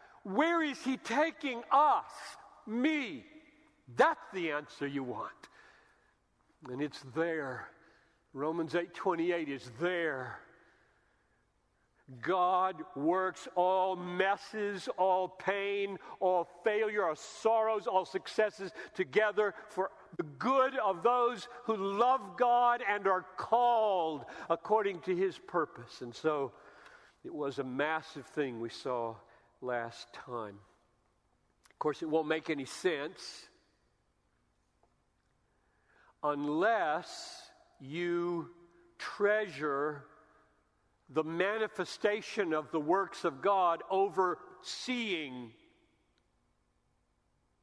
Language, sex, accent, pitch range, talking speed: English, male, American, 155-220 Hz, 95 wpm